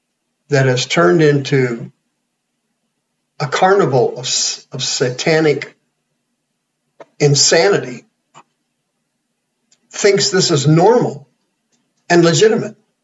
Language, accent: English, American